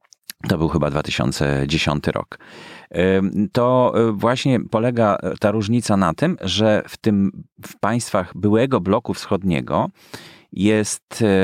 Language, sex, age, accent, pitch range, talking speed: Polish, male, 30-49, native, 85-115 Hz, 110 wpm